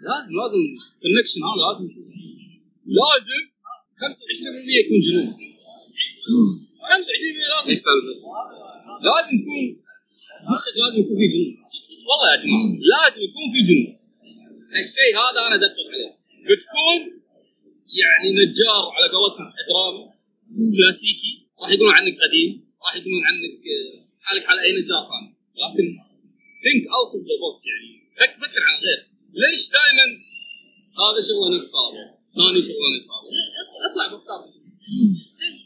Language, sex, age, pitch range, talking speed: Arabic, male, 30-49, 250-410 Hz, 130 wpm